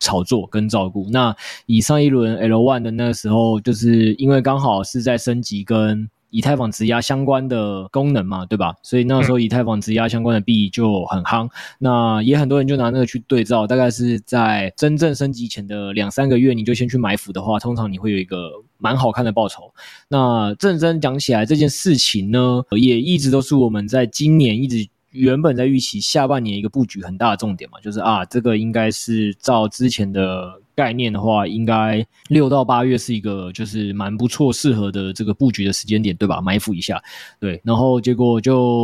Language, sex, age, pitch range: Chinese, male, 20-39, 105-130 Hz